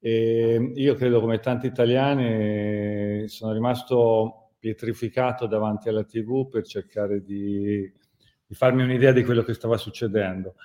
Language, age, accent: Italian, 40-59, native